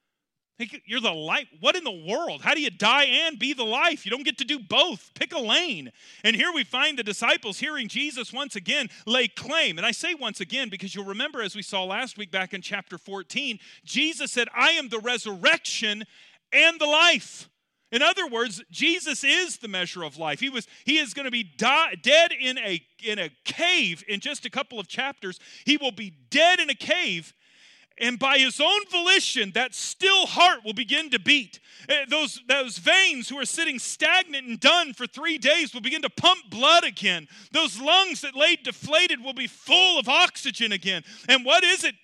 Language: English